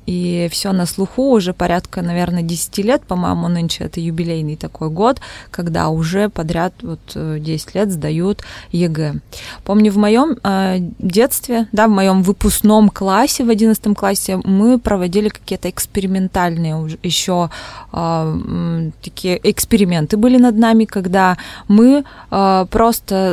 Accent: native